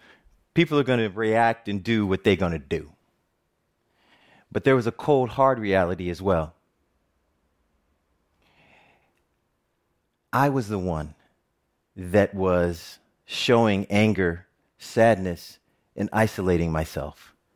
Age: 30-49